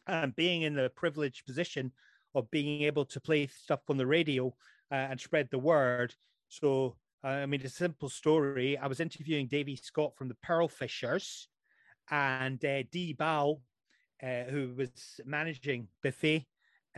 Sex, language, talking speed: male, English, 165 wpm